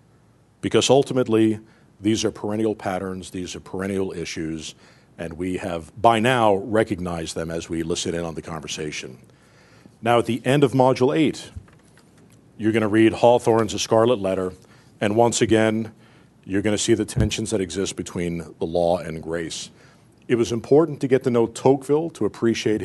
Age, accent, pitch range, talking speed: 50-69, American, 95-120 Hz, 165 wpm